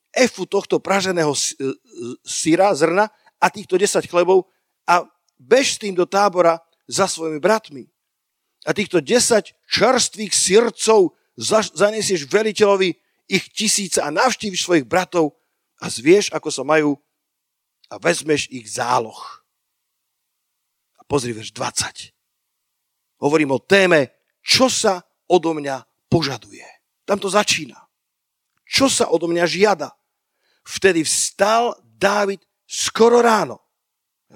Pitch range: 150-205 Hz